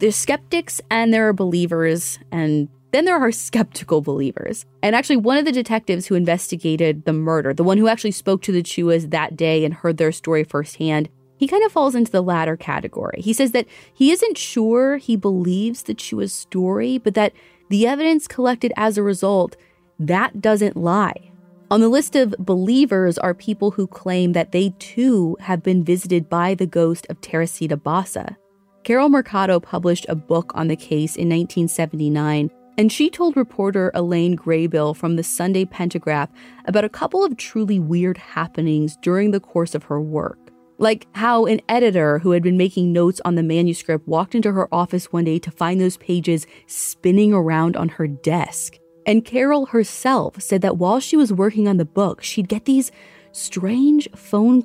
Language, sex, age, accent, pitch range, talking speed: English, female, 30-49, American, 165-225 Hz, 180 wpm